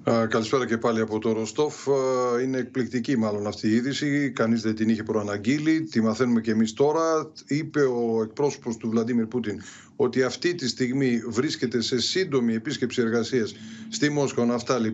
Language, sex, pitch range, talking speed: Greek, male, 115-145 Hz, 160 wpm